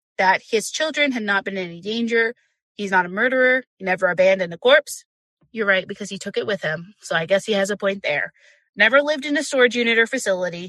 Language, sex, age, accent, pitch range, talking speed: English, female, 20-39, American, 190-240 Hz, 235 wpm